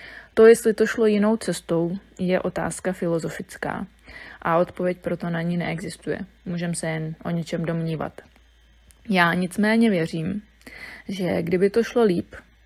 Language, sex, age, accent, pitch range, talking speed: Czech, female, 20-39, native, 170-190 Hz, 135 wpm